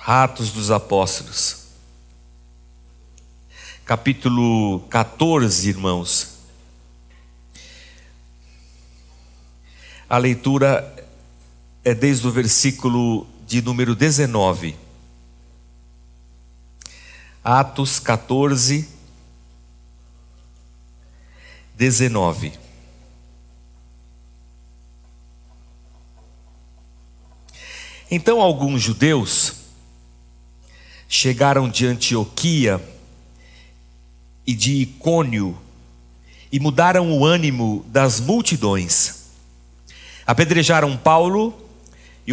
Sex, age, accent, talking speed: male, 60-79, Brazilian, 50 wpm